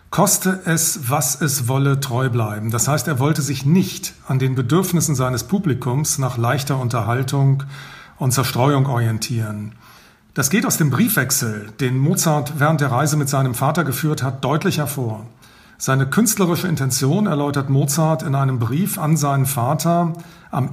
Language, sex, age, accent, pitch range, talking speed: German, male, 40-59, German, 130-165 Hz, 155 wpm